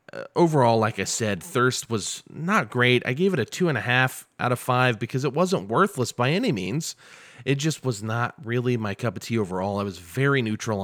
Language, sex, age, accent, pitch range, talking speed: English, male, 30-49, American, 105-140 Hz, 220 wpm